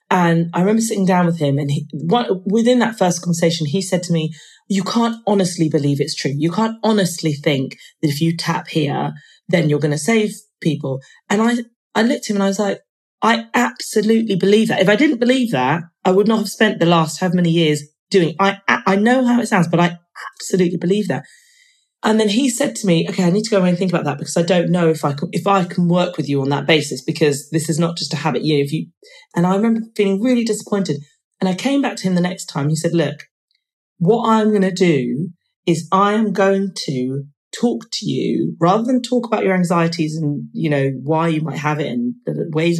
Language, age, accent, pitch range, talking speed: English, 30-49, British, 160-215 Hz, 240 wpm